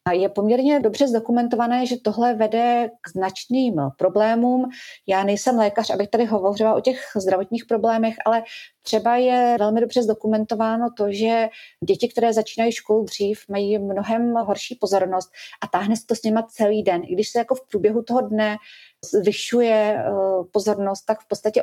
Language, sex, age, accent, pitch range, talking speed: Czech, female, 40-59, native, 190-230 Hz, 165 wpm